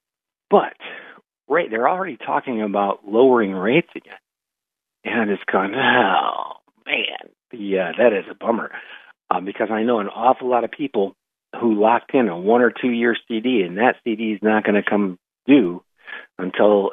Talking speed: 165 wpm